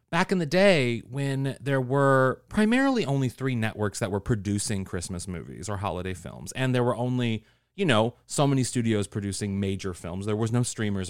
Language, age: English, 30-49